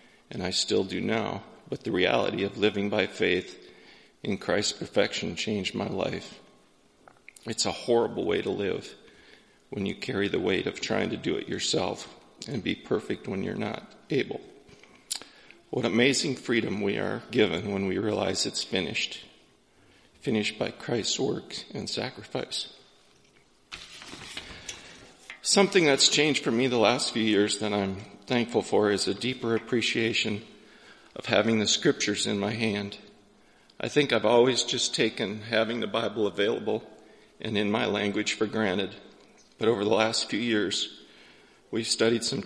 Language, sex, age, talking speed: English, male, 40-59, 155 wpm